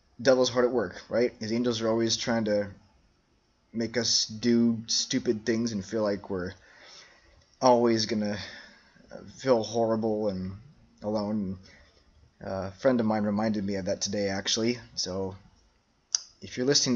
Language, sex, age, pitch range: English, male, 20-39, 105-120 Hz